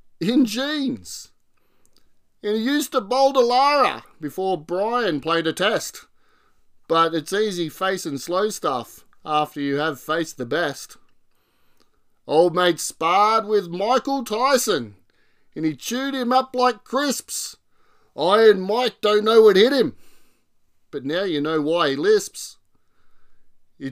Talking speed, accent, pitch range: 140 wpm, Australian, 155-250 Hz